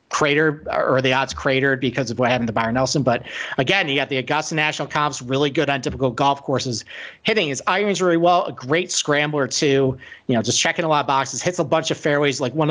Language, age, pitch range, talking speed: English, 40-59, 135-170 Hz, 235 wpm